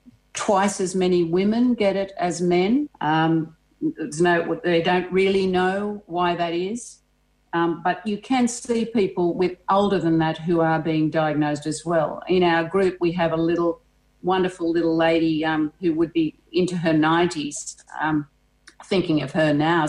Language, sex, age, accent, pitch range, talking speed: English, female, 50-69, Australian, 170-200 Hz, 170 wpm